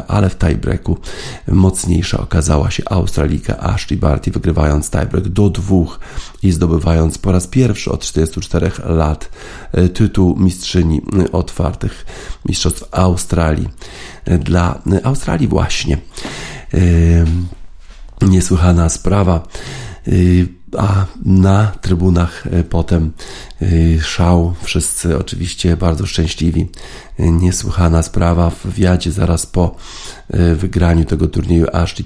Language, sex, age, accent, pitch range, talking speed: Polish, male, 40-59, native, 85-95 Hz, 95 wpm